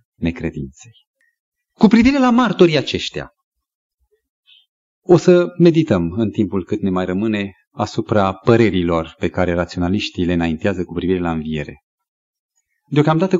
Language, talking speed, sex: Romanian, 115 wpm, male